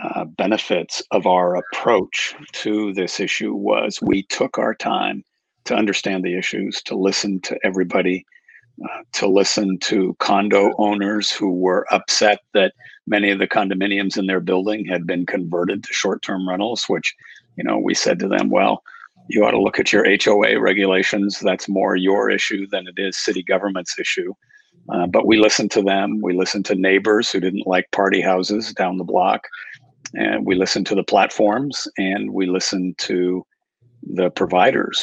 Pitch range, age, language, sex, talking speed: 95-105 Hz, 50-69, English, male, 170 wpm